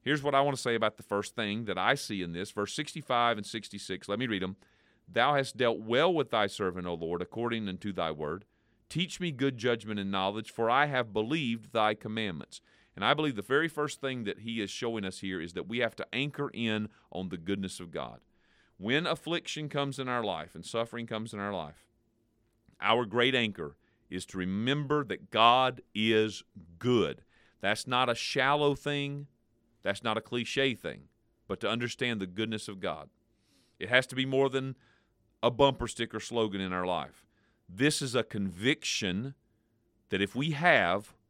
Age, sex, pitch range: 40-59, male, 105-130 Hz